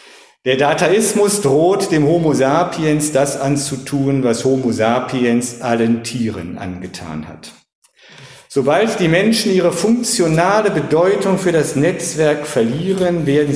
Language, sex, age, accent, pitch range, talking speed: German, male, 50-69, German, 120-160 Hz, 115 wpm